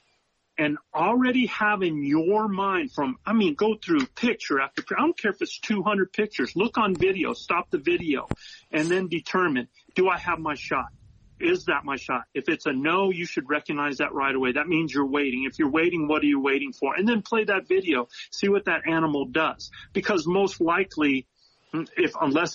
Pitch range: 145-210 Hz